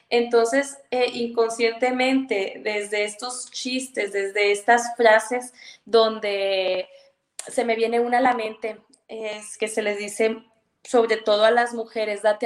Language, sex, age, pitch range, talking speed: Spanish, female, 20-39, 210-235 Hz, 135 wpm